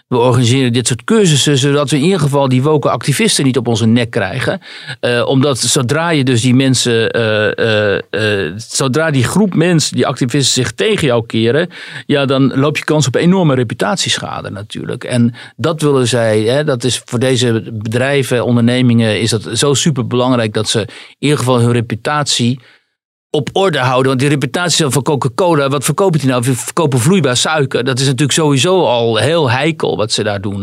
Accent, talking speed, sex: Dutch, 190 wpm, male